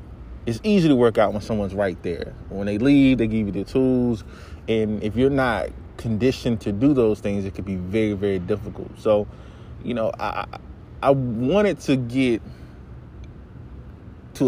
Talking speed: 170 wpm